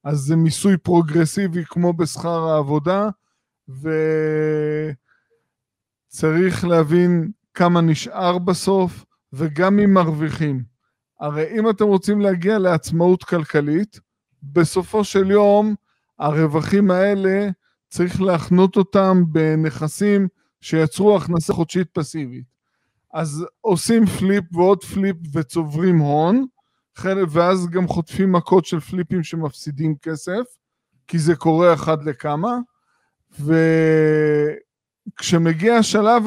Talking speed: 95 wpm